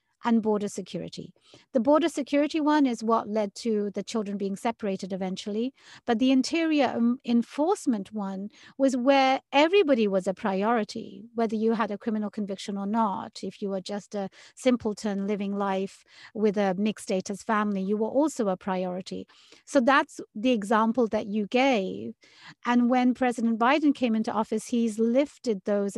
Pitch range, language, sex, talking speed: 210-265 Hz, English, female, 160 wpm